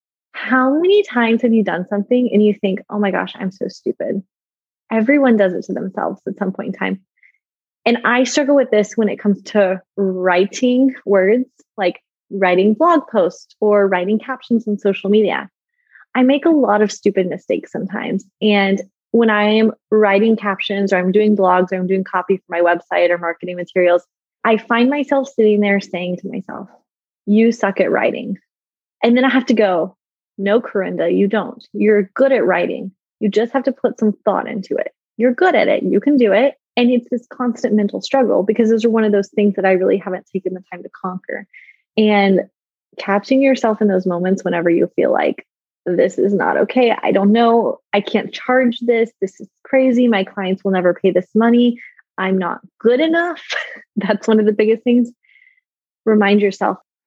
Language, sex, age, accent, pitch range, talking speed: English, female, 20-39, American, 195-245 Hz, 190 wpm